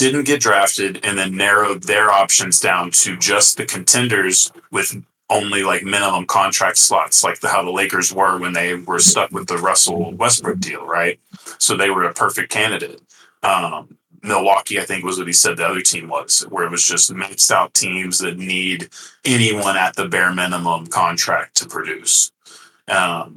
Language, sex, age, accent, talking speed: English, male, 30-49, American, 180 wpm